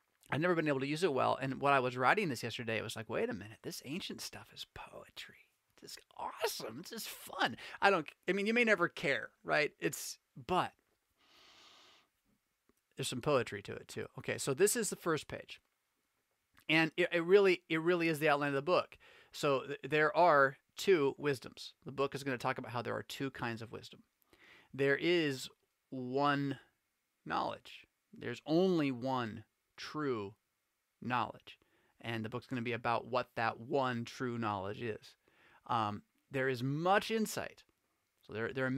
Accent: American